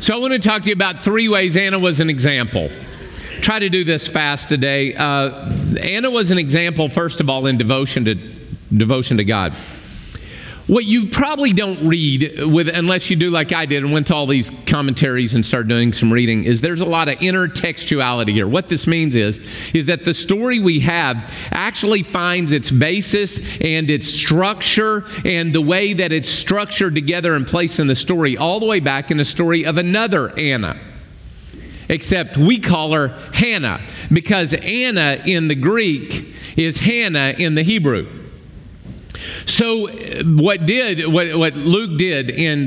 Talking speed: 175 wpm